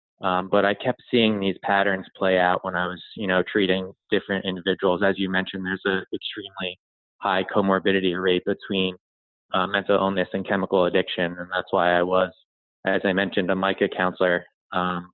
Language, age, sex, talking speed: English, 20-39, male, 180 wpm